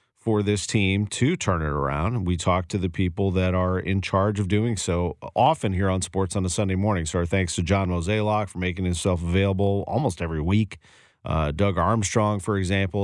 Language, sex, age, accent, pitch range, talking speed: English, male, 40-59, American, 95-120 Hz, 205 wpm